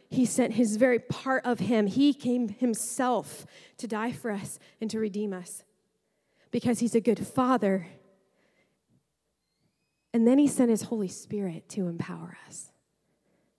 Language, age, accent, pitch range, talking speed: English, 30-49, American, 220-340 Hz, 145 wpm